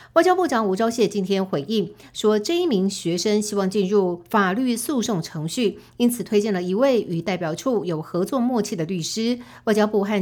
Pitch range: 175-225 Hz